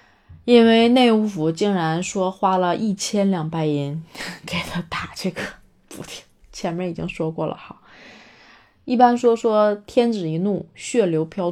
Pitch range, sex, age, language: 165-200 Hz, female, 20-39, Chinese